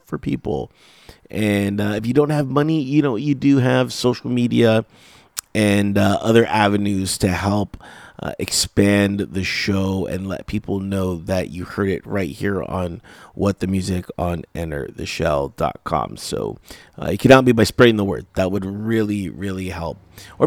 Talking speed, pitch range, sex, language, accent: 175 wpm, 95-130 Hz, male, English, American